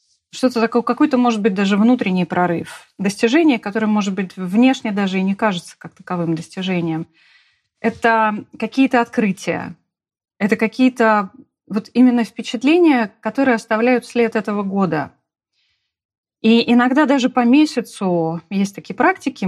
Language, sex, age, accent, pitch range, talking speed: Russian, female, 30-49, native, 185-240 Hz, 125 wpm